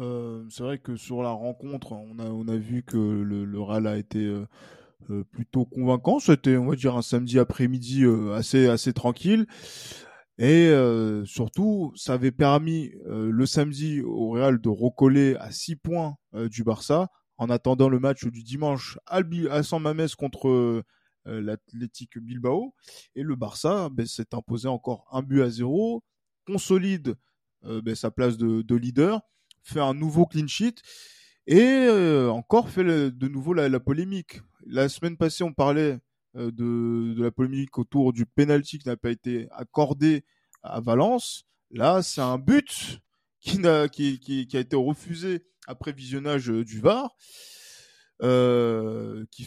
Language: French